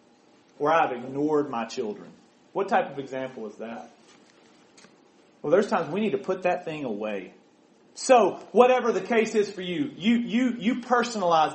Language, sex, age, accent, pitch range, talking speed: English, male, 30-49, American, 165-225 Hz, 160 wpm